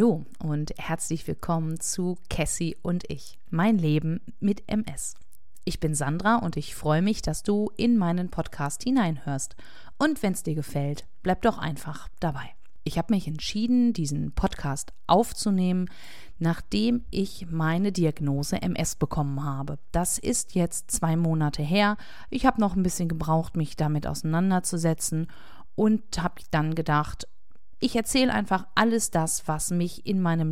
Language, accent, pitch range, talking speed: German, German, 155-205 Hz, 150 wpm